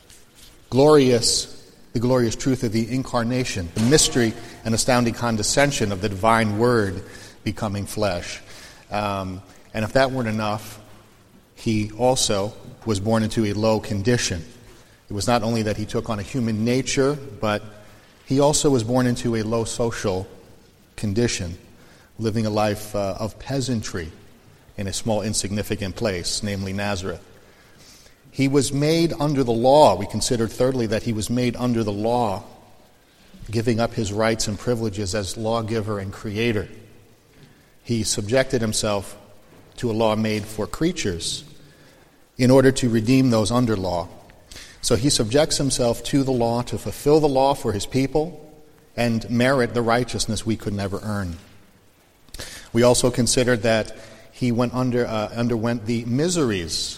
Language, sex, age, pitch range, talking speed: English, male, 40-59, 105-125 Hz, 150 wpm